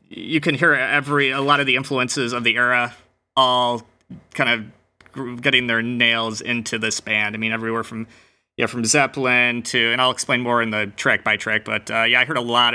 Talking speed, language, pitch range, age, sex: 210 wpm, English, 110-130 Hz, 20-39, male